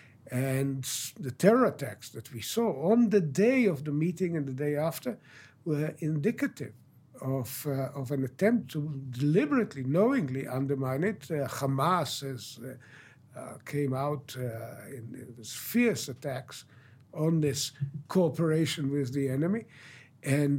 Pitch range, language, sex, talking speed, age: 130-155 Hz, English, male, 140 wpm, 60-79